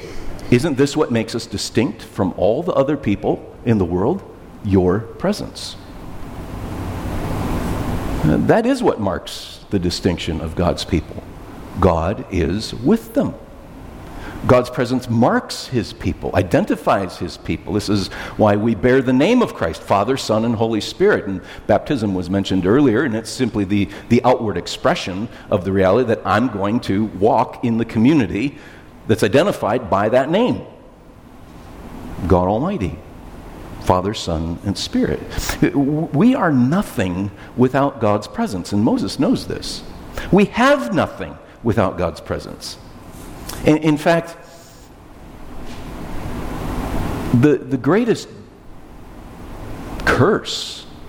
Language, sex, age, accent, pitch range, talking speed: English, male, 50-69, American, 90-125 Hz, 125 wpm